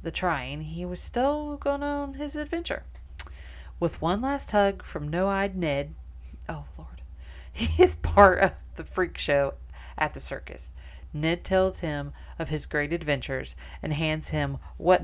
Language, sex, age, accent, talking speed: German, female, 40-59, American, 155 wpm